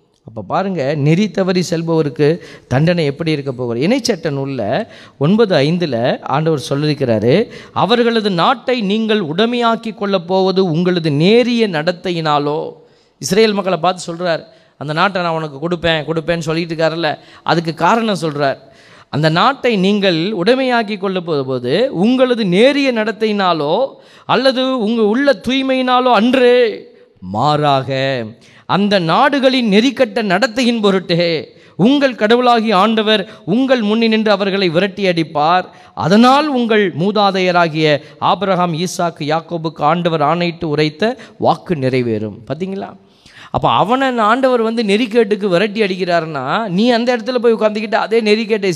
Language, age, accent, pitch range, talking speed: Tamil, 20-39, native, 160-230 Hz, 115 wpm